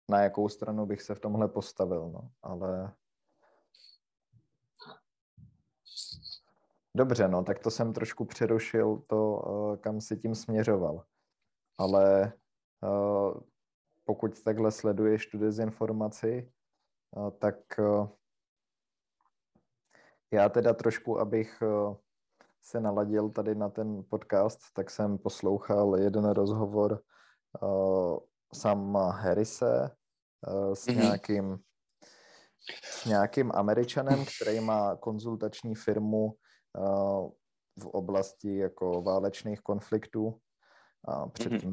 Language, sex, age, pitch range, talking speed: Czech, male, 20-39, 100-110 Hz, 90 wpm